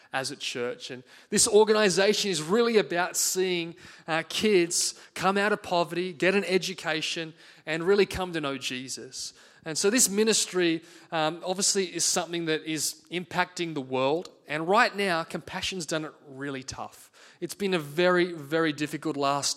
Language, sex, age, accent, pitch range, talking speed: English, male, 20-39, Australian, 145-180 Hz, 165 wpm